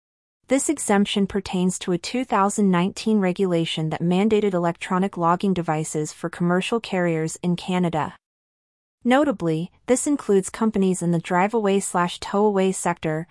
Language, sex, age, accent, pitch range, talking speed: English, female, 30-49, American, 175-205 Hz, 115 wpm